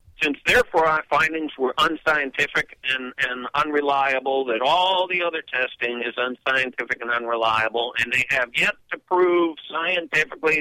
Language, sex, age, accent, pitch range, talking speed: English, male, 50-69, American, 125-160 Hz, 140 wpm